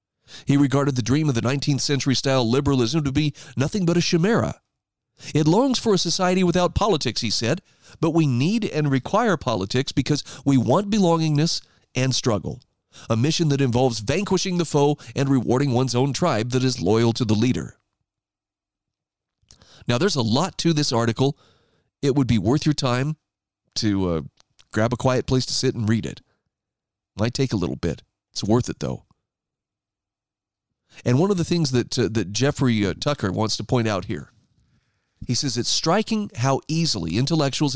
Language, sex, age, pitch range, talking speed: English, male, 40-59, 115-155 Hz, 175 wpm